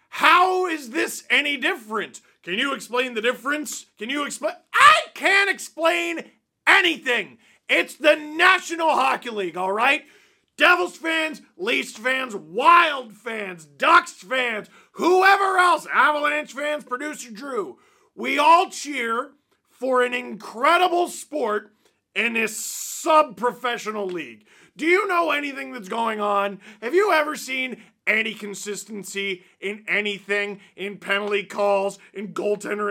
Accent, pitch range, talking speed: American, 205-315 Hz, 125 wpm